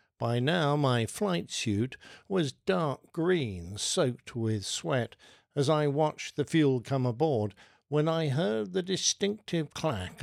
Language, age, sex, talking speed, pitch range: English, 60-79, male, 140 wpm, 115-150 Hz